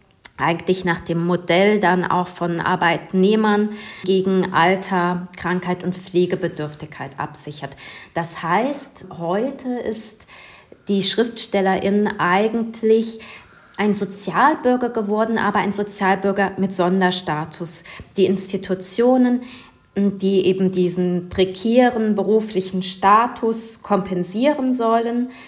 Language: German